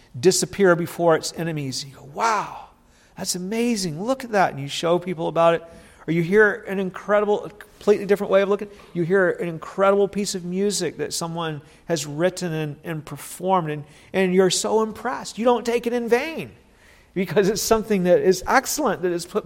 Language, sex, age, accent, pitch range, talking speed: English, male, 40-59, American, 165-205 Hz, 195 wpm